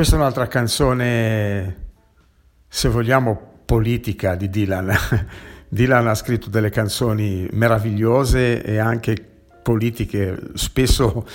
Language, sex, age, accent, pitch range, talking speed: Italian, male, 50-69, native, 100-120 Hz, 100 wpm